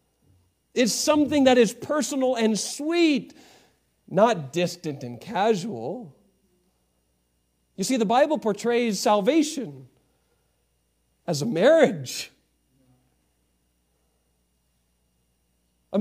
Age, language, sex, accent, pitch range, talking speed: 50-69, English, male, American, 180-255 Hz, 80 wpm